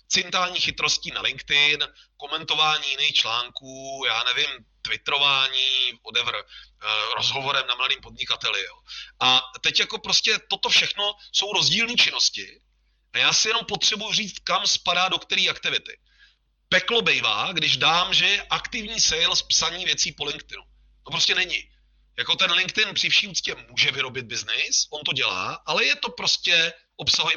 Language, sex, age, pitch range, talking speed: Czech, male, 30-49, 150-215 Hz, 145 wpm